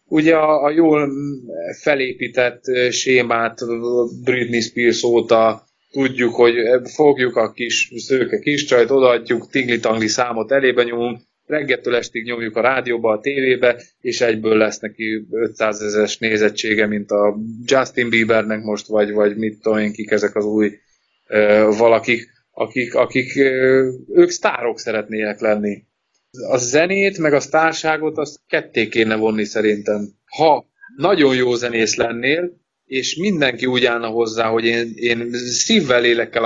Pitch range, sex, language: 110-140 Hz, male, Hungarian